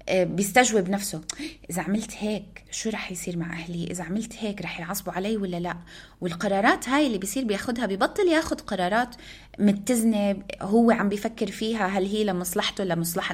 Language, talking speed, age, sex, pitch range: Arabic, 155 wpm, 20-39, female, 180-225 Hz